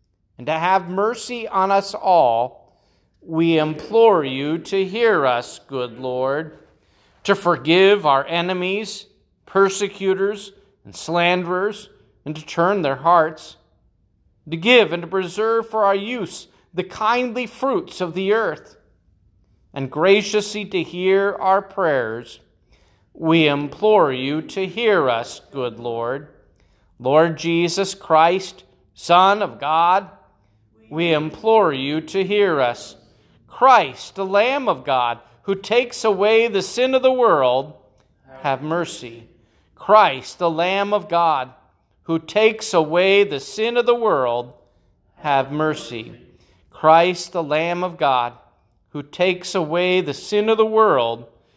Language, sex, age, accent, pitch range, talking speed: English, male, 40-59, American, 130-200 Hz, 130 wpm